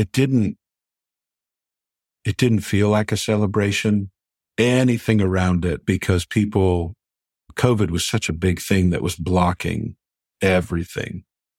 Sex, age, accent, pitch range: male, 50-69, American, 90-105 Hz